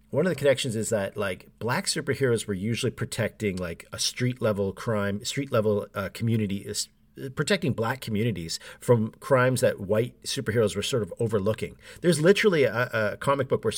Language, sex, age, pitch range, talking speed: English, male, 50-69, 100-125 Hz, 170 wpm